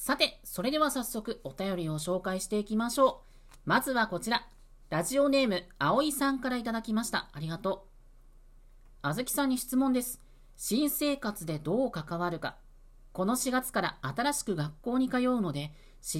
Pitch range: 170-245 Hz